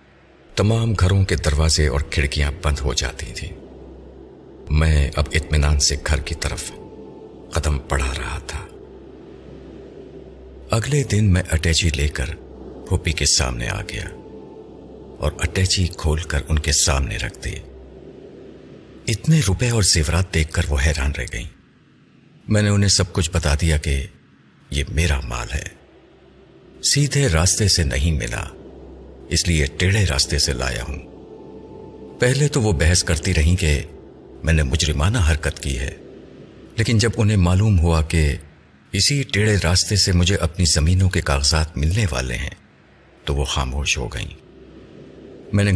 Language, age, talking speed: Urdu, 50-69, 150 wpm